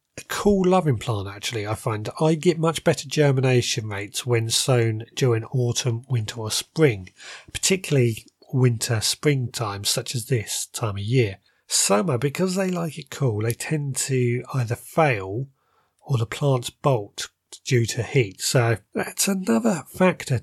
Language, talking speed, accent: English, 155 wpm, British